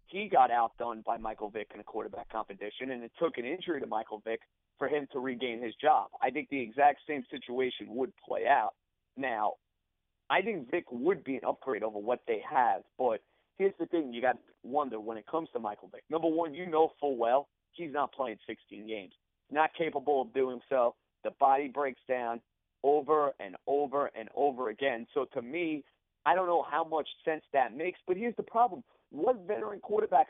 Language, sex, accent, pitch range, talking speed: English, male, American, 120-165 Hz, 205 wpm